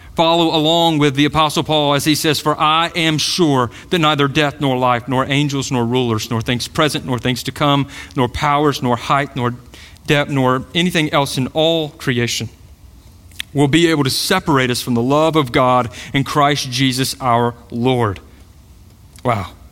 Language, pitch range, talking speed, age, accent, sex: English, 100-160 Hz, 175 wpm, 40-59, American, male